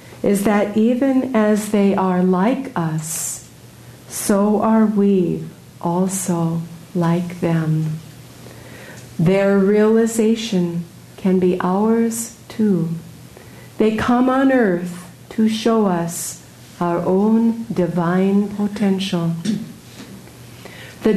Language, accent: English, American